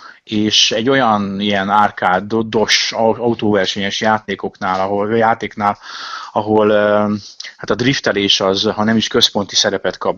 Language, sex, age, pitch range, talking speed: Hungarian, male, 30-49, 100-130 Hz, 125 wpm